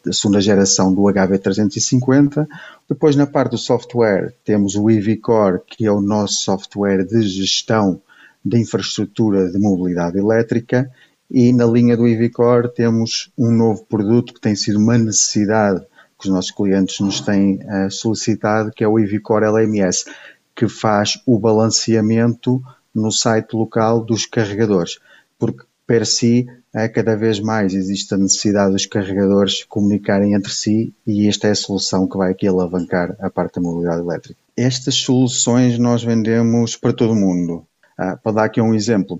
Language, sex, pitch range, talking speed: Portuguese, male, 100-115 Hz, 160 wpm